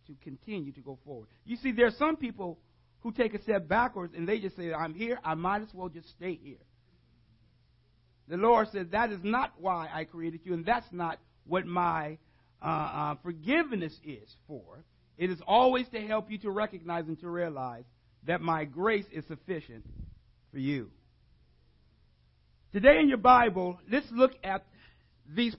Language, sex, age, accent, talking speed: English, male, 50-69, American, 175 wpm